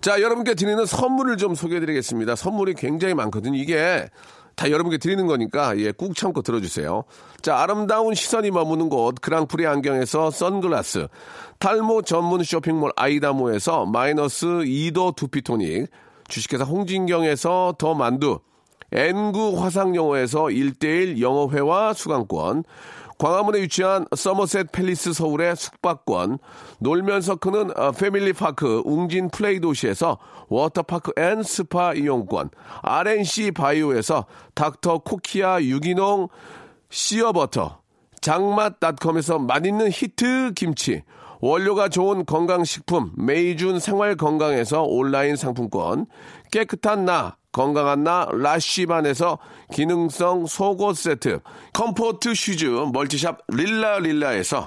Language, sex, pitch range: Korean, male, 150-200 Hz